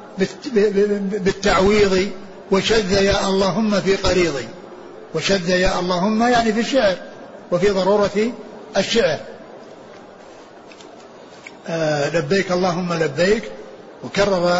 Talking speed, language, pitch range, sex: 80 wpm, Arabic, 165-190 Hz, male